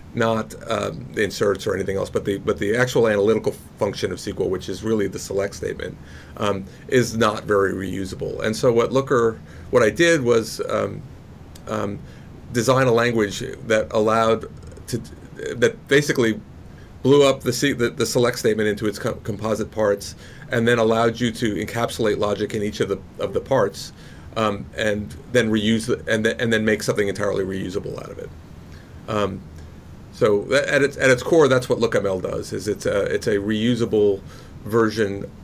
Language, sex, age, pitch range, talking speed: English, male, 40-59, 95-115 Hz, 180 wpm